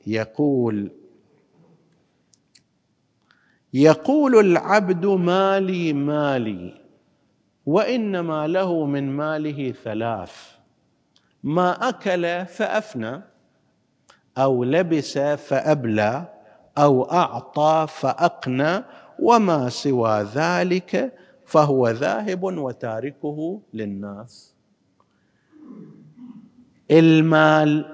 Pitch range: 135-220 Hz